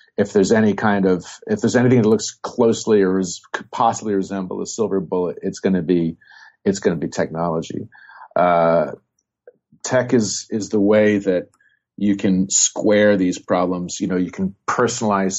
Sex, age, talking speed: male, 40-59, 170 wpm